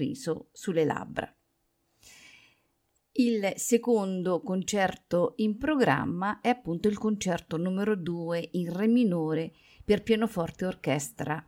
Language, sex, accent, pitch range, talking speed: Italian, female, native, 160-200 Hz, 100 wpm